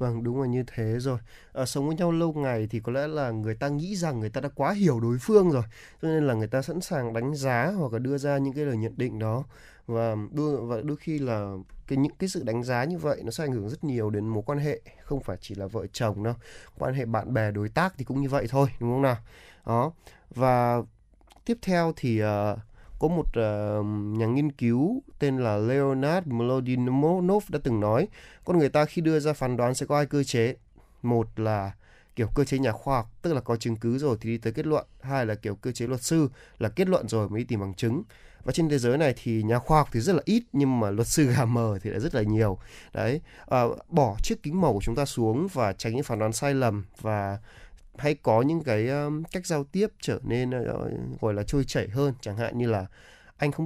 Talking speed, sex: 245 wpm, male